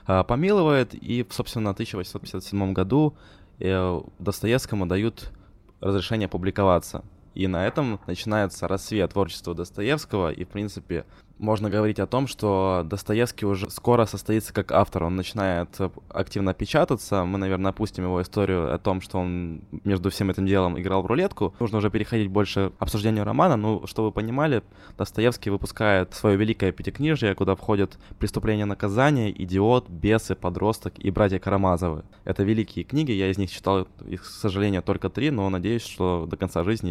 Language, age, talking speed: Ukrainian, 20-39, 155 wpm